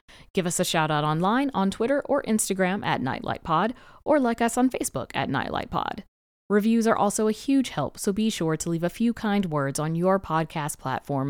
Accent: American